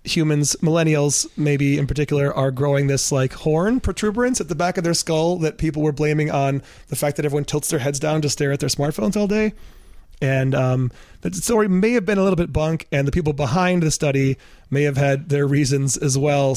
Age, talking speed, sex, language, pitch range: 30-49, 220 wpm, male, English, 135-165 Hz